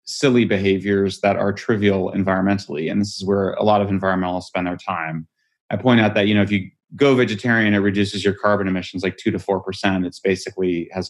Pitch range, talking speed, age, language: 100-120 Hz, 210 wpm, 30-49, English